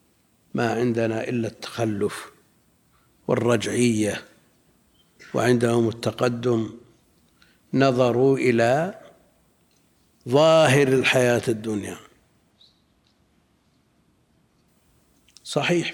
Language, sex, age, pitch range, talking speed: Arabic, male, 60-79, 115-140 Hz, 50 wpm